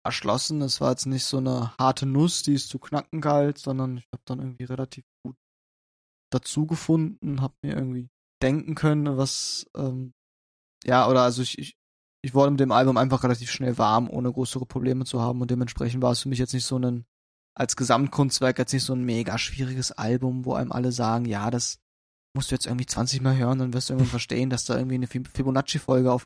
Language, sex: German, male